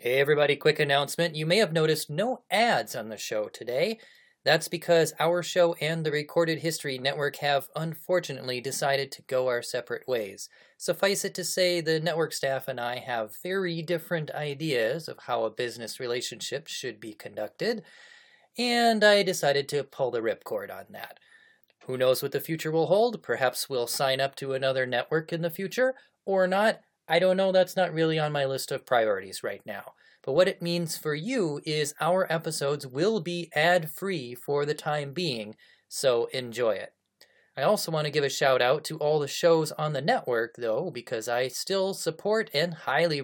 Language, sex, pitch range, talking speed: English, male, 140-195 Hz, 185 wpm